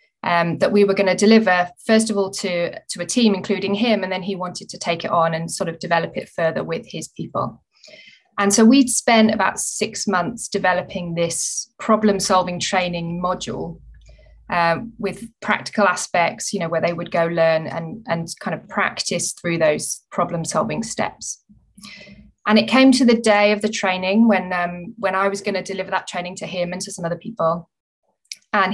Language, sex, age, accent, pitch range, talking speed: English, female, 20-39, British, 180-215 Hz, 190 wpm